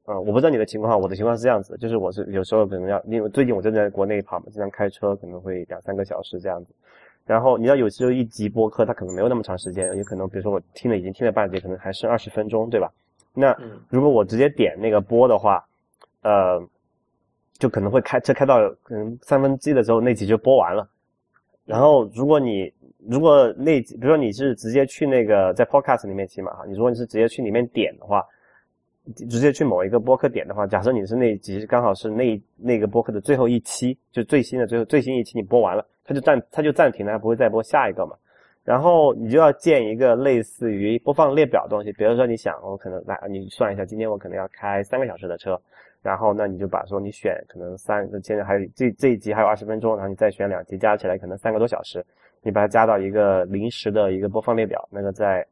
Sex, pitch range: male, 100-120 Hz